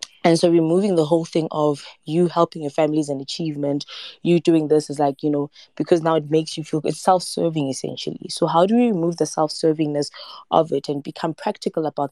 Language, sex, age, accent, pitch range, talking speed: English, female, 20-39, South African, 150-175 Hz, 210 wpm